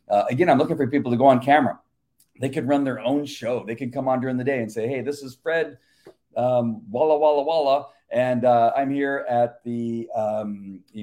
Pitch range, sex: 110-140 Hz, male